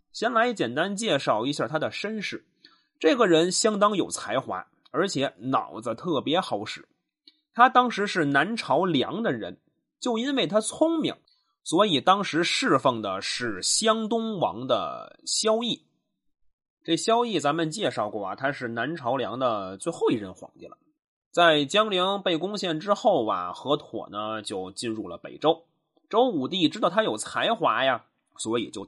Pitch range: 160-250 Hz